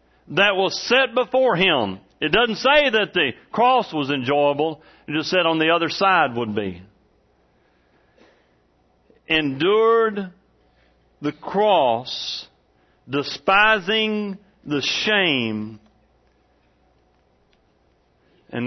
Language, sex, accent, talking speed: English, male, American, 95 wpm